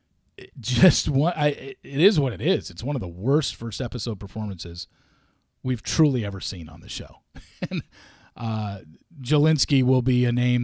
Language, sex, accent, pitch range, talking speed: English, male, American, 110-150 Hz, 165 wpm